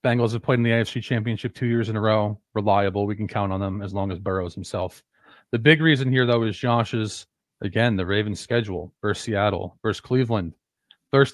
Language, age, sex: English, 40-59, male